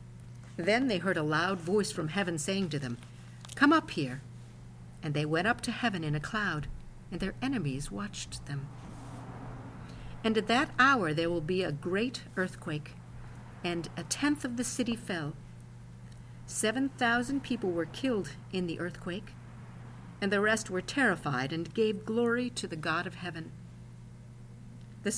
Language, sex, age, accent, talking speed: English, female, 50-69, American, 160 wpm